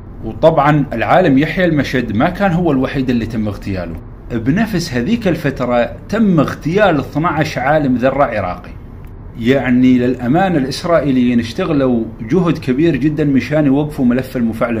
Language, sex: Arabic, male